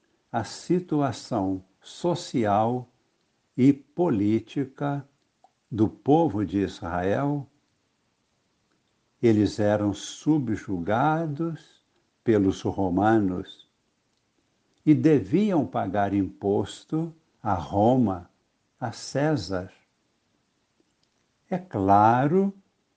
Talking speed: 65 wpm